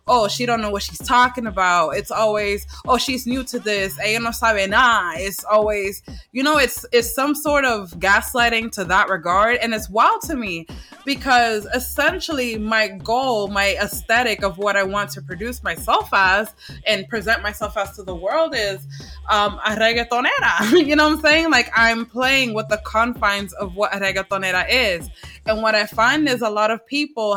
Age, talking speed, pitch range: 20-39, 185 wpm, 200-255 Hz